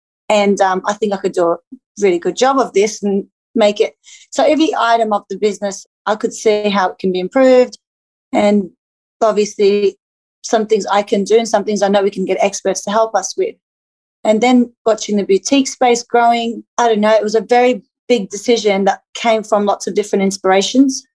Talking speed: 205 wpm